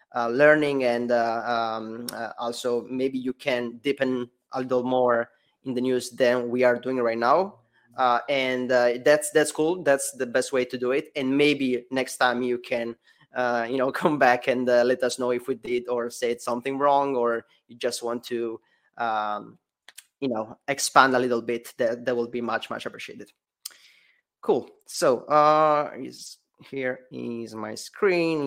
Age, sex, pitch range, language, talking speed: 20-39, male, 120-135 Hz, English, 180 wpm